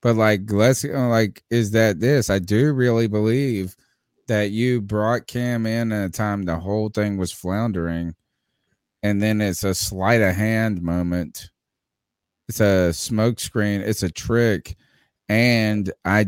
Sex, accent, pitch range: male, American, 105-130 Hz